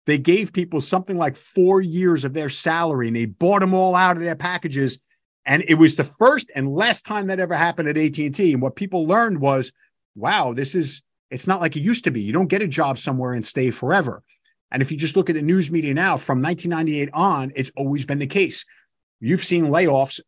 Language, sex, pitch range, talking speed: English, male, 125-170 Hz, 230 wpm